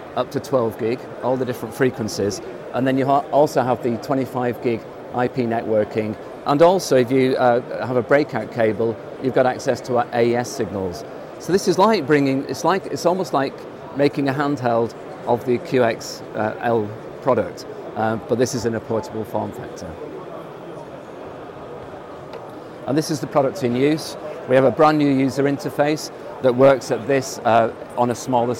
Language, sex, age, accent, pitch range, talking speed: English, male, 40-59, British, 115-140 Hz, 180 wpm